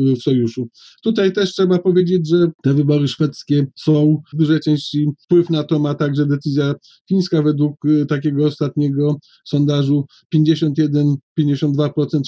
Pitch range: 150-165 Hz